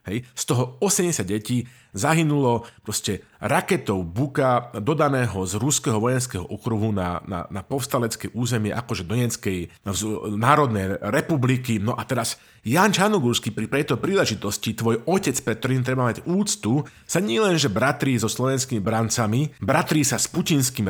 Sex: male